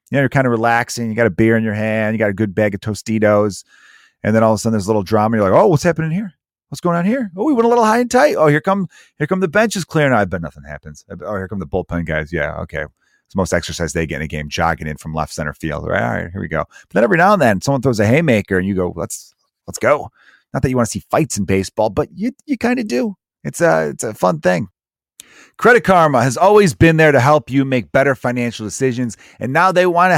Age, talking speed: 30-49, 290 wpm